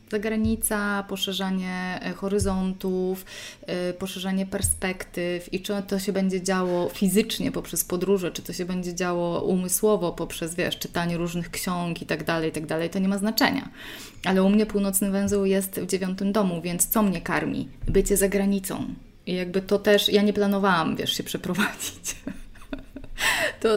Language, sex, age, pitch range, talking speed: Polish, female, 20-39, 180-210 Hz, 160 wpm